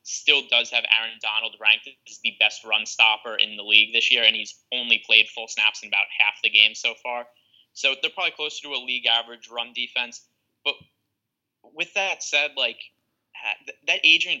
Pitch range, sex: 115-135 Hz, male